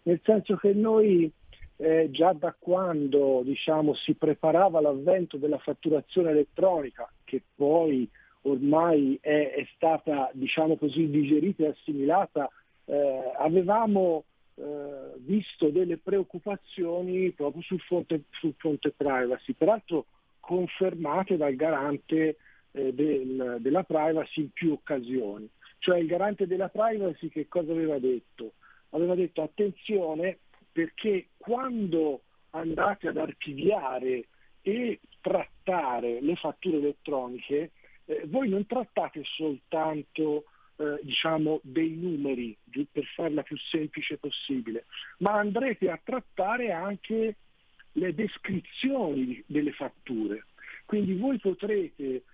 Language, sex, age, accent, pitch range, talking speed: Italian, male, 50-69, native, 145-185 Hz, 110 wpm